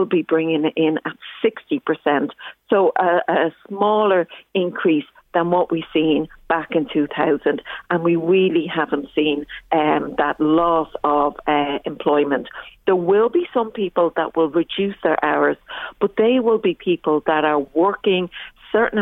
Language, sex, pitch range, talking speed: English, female, 155-190 Hz, 150 wpm